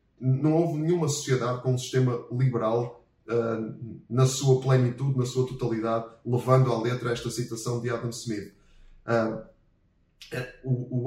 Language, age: Portuguese, 20-39